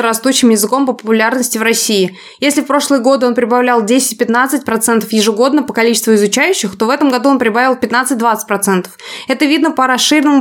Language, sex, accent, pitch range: Russian, female, native, 225-265 Hz